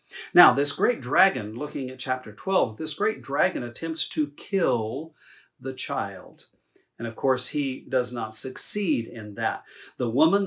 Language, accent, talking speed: English, American, 155 wpm